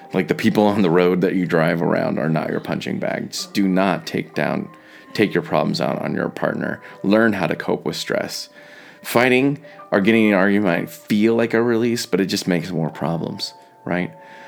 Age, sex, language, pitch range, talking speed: 30-49, male, English, 95-130 Hz, 205 wpm